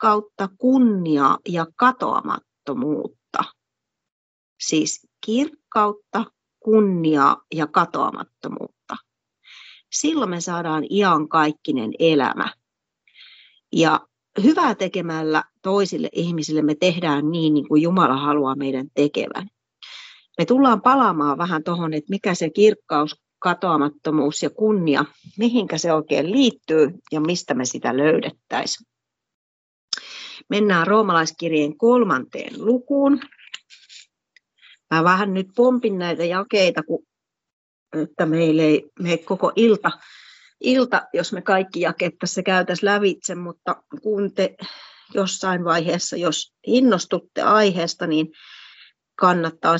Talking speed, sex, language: 100 wpm, female, Finnish